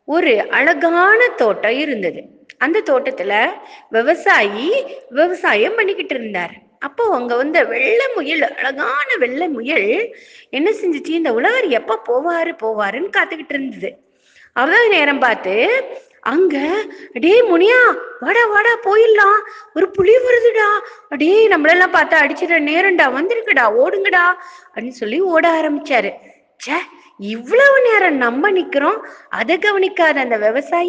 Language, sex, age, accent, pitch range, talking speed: Tamil, female, 20-39, native, 260-405 Hz, 105 wpm